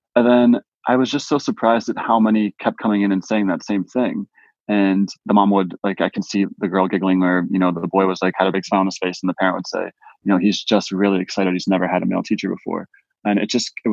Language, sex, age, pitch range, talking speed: English, male, 20-39, 95-105 Hz, 280 wpm